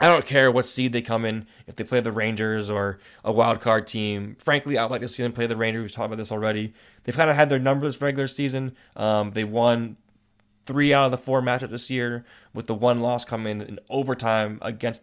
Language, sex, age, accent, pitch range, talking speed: English, male, 20-39, American, 110-125 Hz, 240 wpm